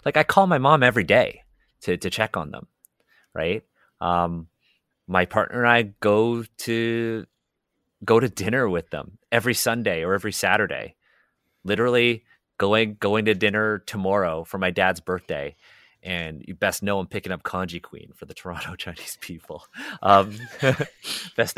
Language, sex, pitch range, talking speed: English, male, 95-120 Hz, 155 wpm